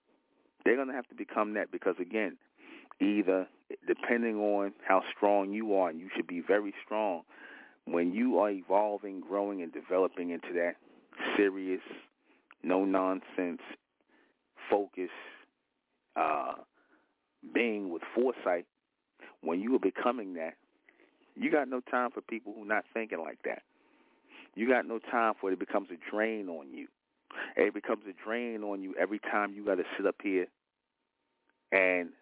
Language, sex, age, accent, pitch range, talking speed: English, male, 40-59, American, 90-105 Hz, 150 wpm